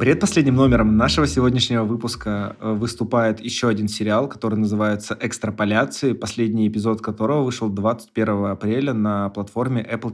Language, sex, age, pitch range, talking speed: Russian, male, 20-39, 110-125 Hz, 125 wpm